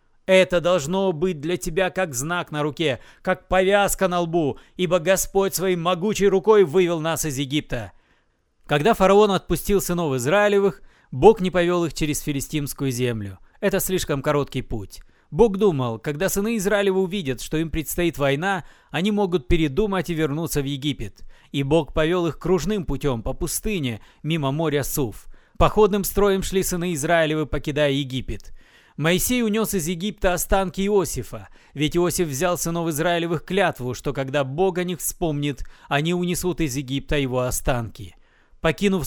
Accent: native